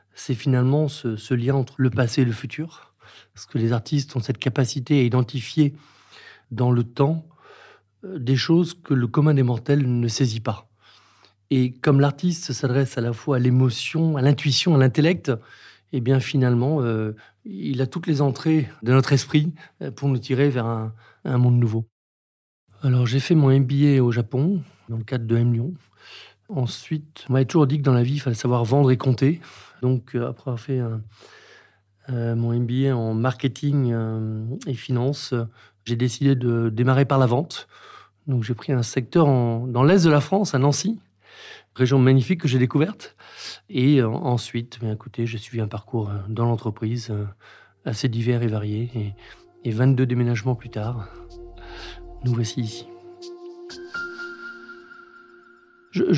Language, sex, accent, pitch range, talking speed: French, male, French, 120-145 Hz, 170 wpm